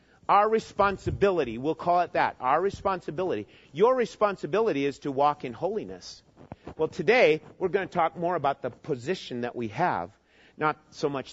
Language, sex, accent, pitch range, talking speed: English, male, American, 150-205 Hz, 165 wpm